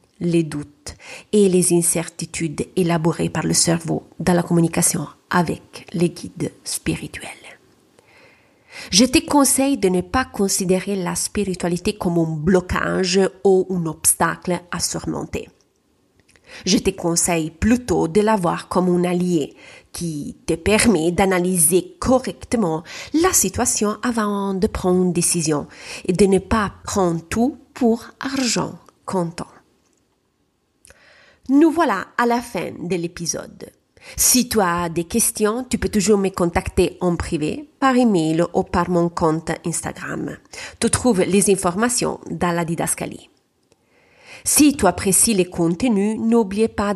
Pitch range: 175-220 Hz